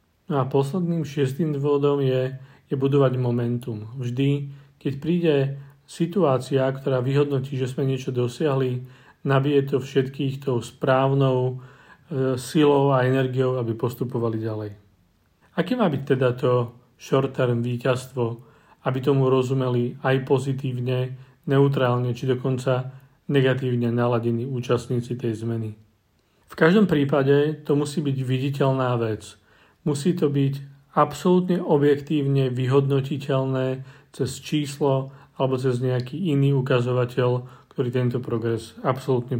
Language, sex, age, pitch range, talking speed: Czech, male, 40-59, 125-145 Hz, 115 wpm